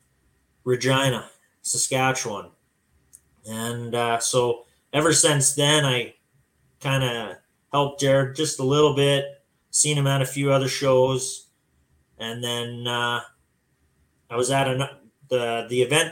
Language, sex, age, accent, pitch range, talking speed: English, male, 20-39, American, 115-140 Hz, 125 wpm